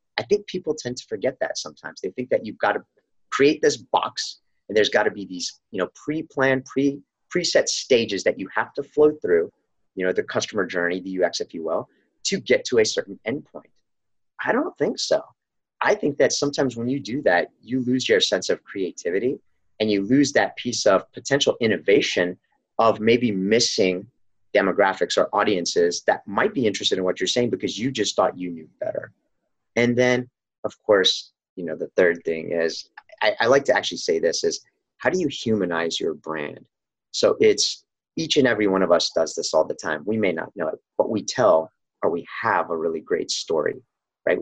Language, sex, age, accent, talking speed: English, male, 30-49, American, 205 wpm